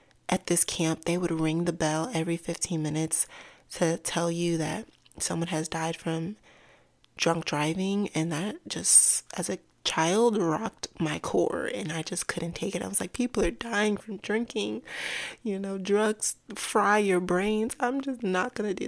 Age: 20-39